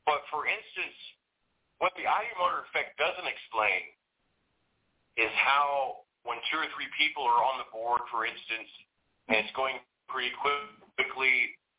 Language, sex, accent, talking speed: English, male, American, 145 wpm